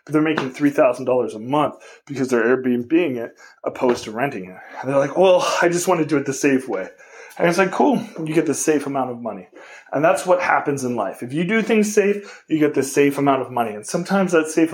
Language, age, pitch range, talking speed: English, 20-39, 130-185 Hz, 240 wpm